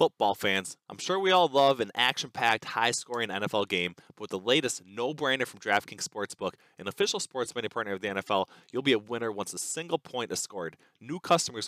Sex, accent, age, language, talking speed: male, American, 20-39, English, 205 wpm